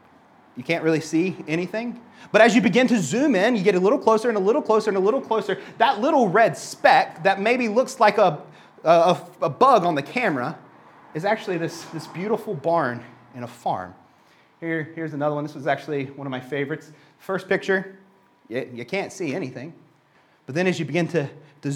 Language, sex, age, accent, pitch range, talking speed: English, male, 30-49, American, 155-225 Hz, 205 wpm